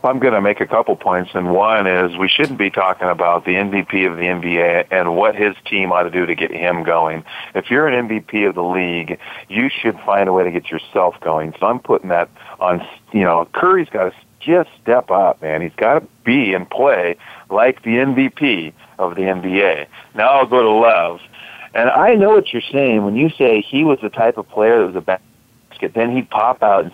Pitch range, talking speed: 95-140 Hz, 225 wpm